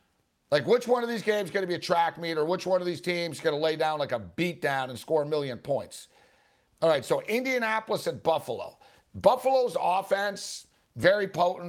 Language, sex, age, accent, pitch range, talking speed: English, male, 60-79, American, 150-195 Hz, 205 wpm